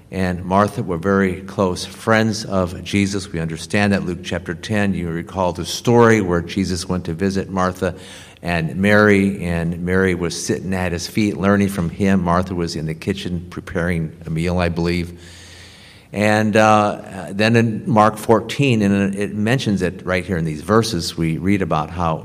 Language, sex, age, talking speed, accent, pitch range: English, male, 50-69, 175 wpm, American, 85-105 Hz